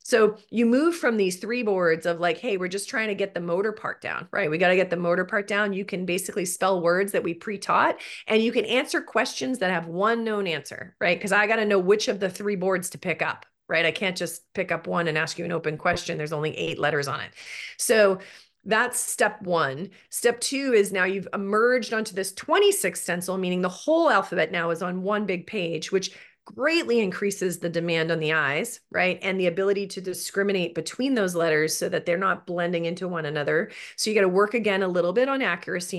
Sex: female